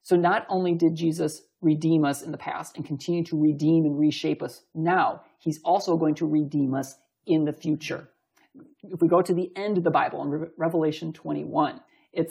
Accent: American